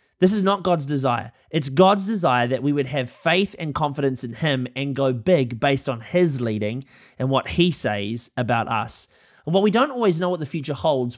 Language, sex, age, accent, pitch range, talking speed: English, male, 20-39, Australian, 130-180 Hz, 215 wpm